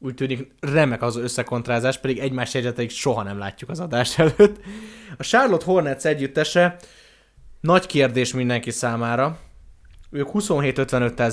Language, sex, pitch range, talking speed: Hungarian, male, 110-140 Hz, 125 wpm